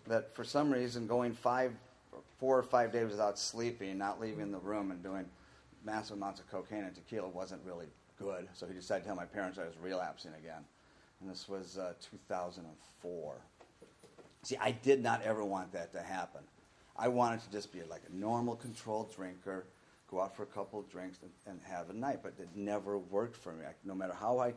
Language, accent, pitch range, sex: English, American, 95-120 Hz, male